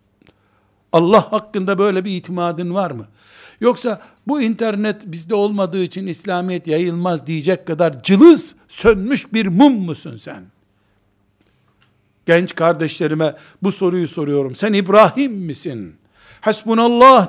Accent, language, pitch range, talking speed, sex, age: native, Turkish, 145-215 Hz, 110 wpm, male, 60-79